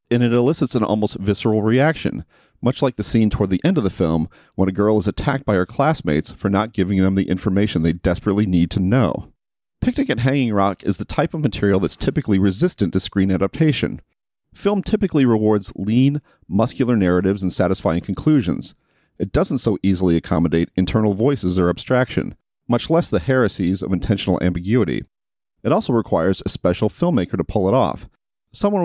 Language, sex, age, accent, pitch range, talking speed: English, male, 40-59, American, 95-125 Hz, 180 wpm